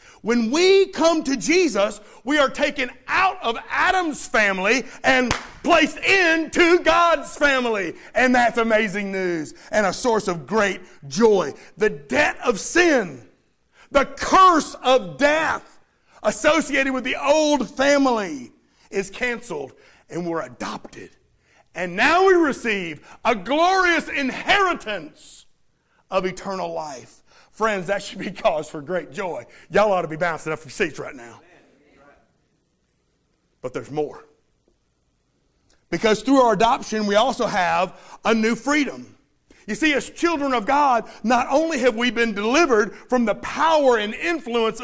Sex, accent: male, American